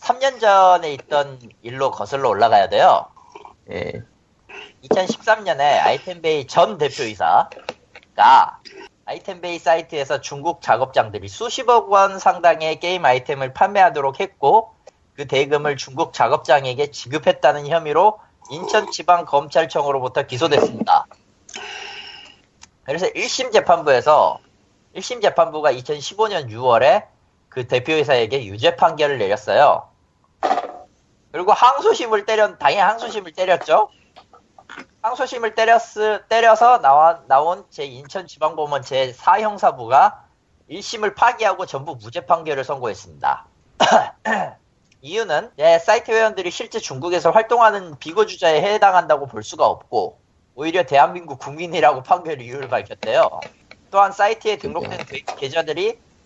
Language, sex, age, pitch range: Korean, male, 40-59, 145-220 Hz